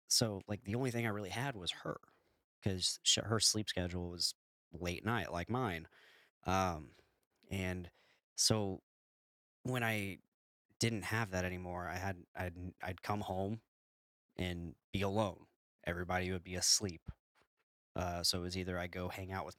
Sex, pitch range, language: male, 85-100 Hz, English